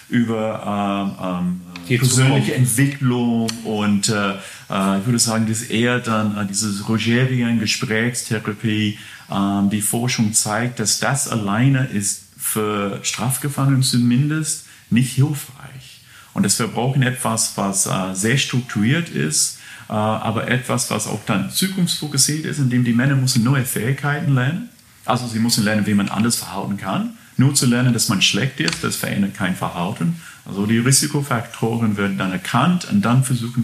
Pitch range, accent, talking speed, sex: 105-130 Hz, German, 150 wpm, male